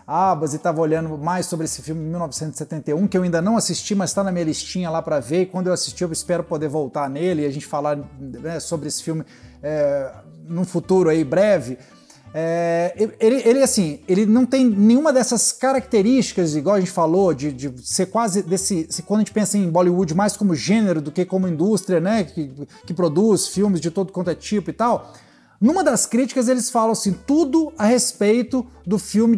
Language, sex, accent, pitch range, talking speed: Portuguese, male, Brazilian, 170-230 Hz, 205 wpm